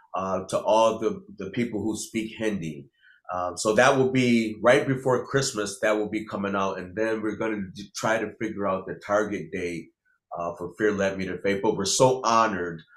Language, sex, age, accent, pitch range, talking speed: English, male, 30-49, American, 90-110 Hz, 210 wpm